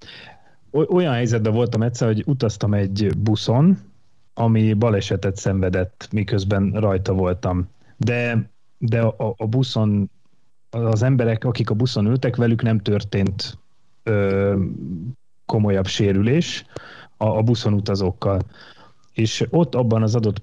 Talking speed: 115 wpm